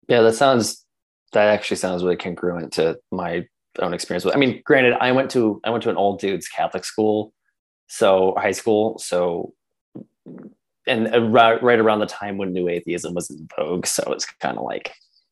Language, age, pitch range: English, 20-39, 85-120 Hz